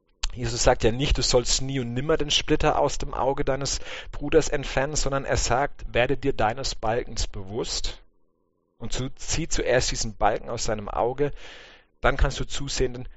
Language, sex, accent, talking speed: English, male, German, 170 wpm